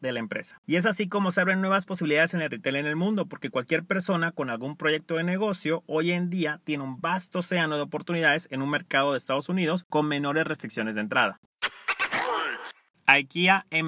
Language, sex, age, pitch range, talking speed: Spanish, male, 30-49, 145-180 Hz, 205 wpm